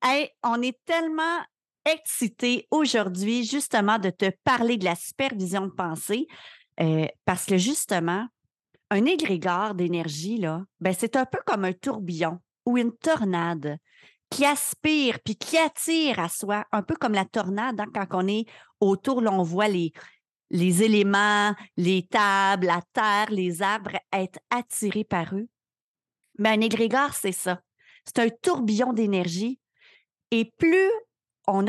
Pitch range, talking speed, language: 180-240 Hz, 140 wpm, French